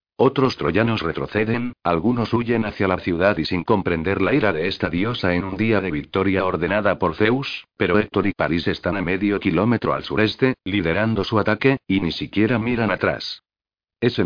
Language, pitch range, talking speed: Spanish, 95-110 Hz, 180 wpm